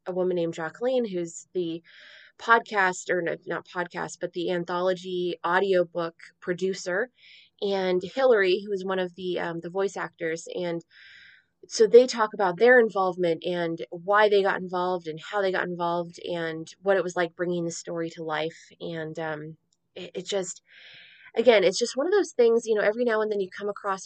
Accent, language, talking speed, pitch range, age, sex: American, English, 185 wpm, 170-205 Hz, 20-39, female